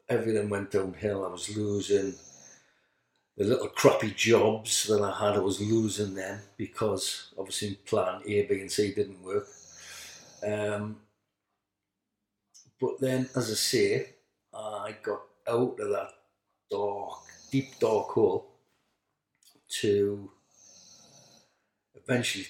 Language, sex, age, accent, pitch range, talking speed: English, male, 50-69, British, 100-125 Hz, 115 wpm